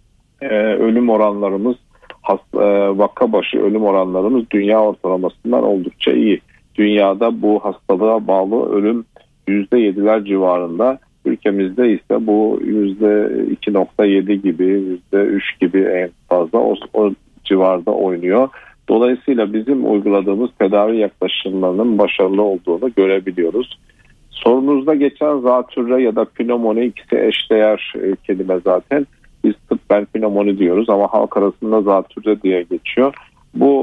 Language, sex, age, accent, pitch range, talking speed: Turkish, male, 50-69, native, 95-115 Hz, 105 wpm